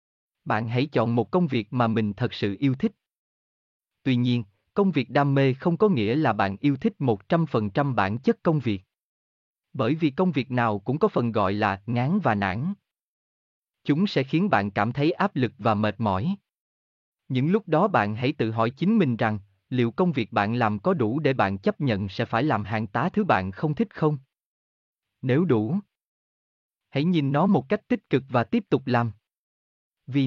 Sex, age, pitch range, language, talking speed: male, 20-39, 110-165 Hz, Vietnamese, 195 wpm